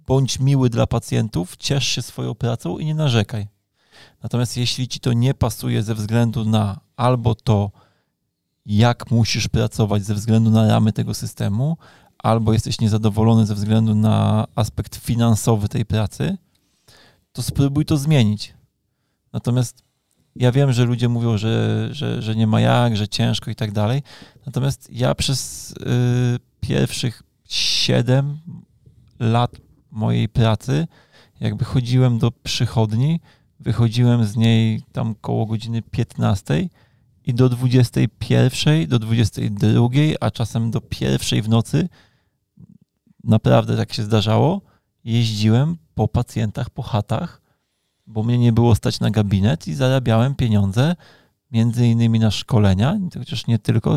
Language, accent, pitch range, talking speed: Polish, native, 110-130 Hz, 130 wpm